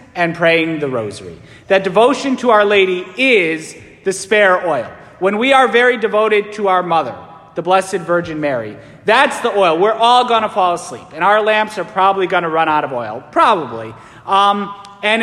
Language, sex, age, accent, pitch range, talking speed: English, male, 40-59, American, 170-230 Hz, 190 wpm